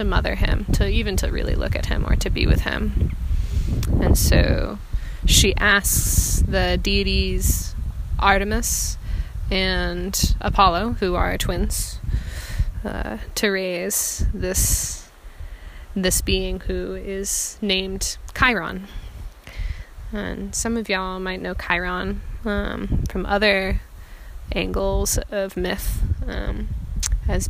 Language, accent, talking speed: English, American, 110 wpm